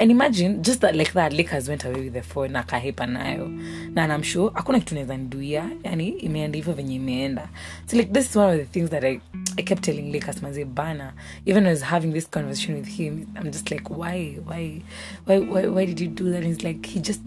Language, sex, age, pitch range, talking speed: English, female, 30-49, 145-185 Hz, 205 wpm